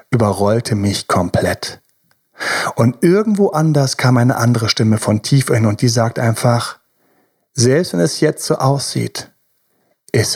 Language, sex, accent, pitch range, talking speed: German, male, German, 115-150 Hz, 140 wpm